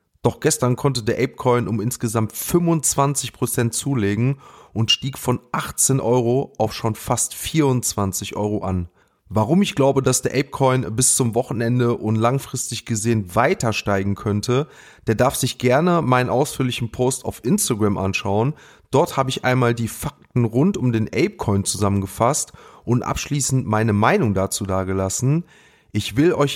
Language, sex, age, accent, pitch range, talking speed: German, male, 30-49, German, 105-135 Hz, 145 wpm